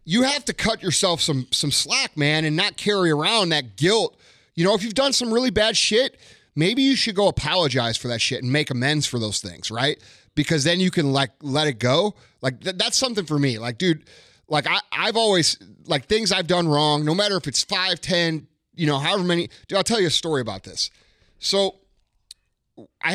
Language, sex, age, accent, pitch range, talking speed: English, male, 30-49, American, 130-175 Hz, 220 wpm